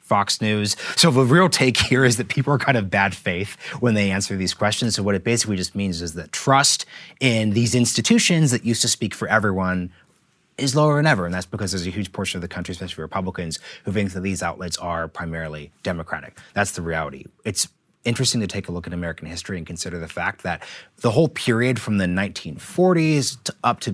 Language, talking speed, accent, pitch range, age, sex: English, 220 wpm, American, 90-120 Hz, 30-49, male